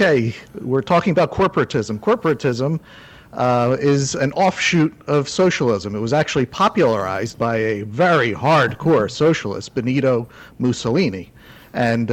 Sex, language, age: male, English, 50-69